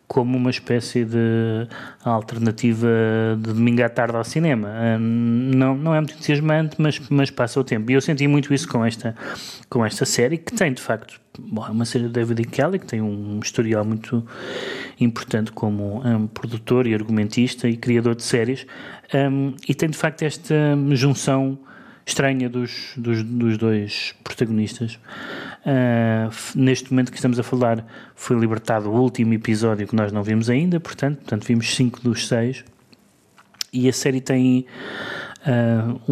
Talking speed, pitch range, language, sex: 155 wpm, 115-140 Hz, Portuguese, male